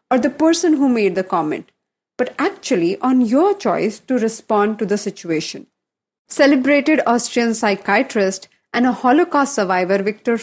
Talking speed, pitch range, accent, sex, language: 145 wpm, 220-310 Hz, Indian, female, English